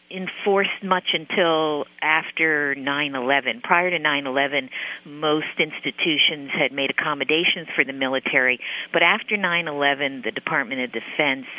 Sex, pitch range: female, 130-160 Hz